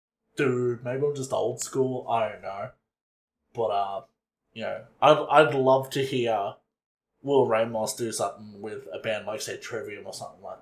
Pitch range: 115-145 Hz